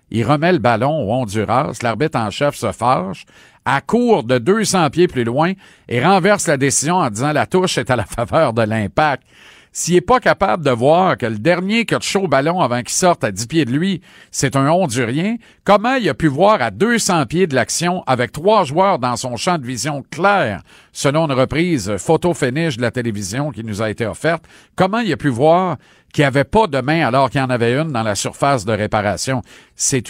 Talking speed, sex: 220 wpm, male